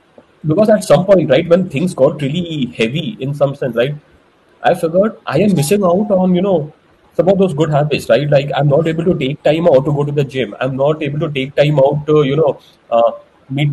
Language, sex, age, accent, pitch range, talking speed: English, male, 30-49, Indian, 130-170 Hz, 235 wpm